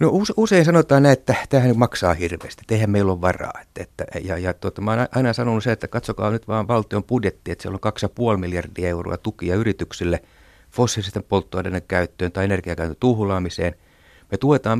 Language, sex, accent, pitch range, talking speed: Finnish, male, native, 90-115 Hz, 180 wpm